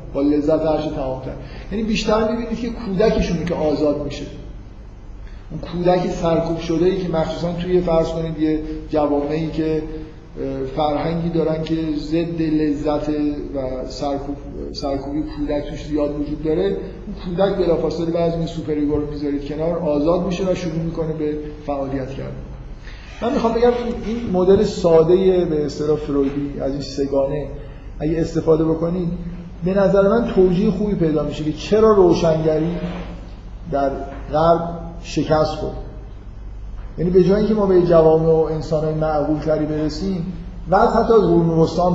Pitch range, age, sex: 145-175 Hz, 50-69, male